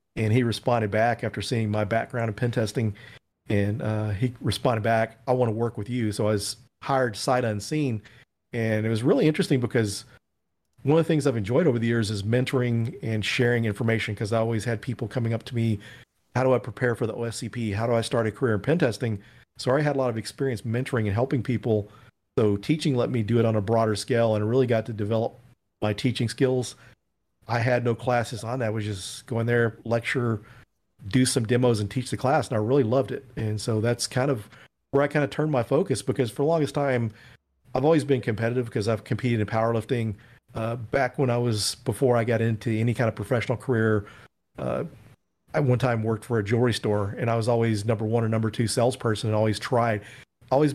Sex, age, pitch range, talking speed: male, 40-59, 110-130 Hz, 225 wpm